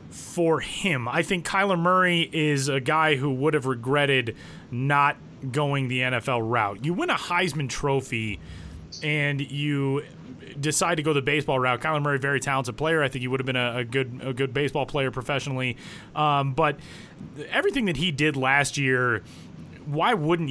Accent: American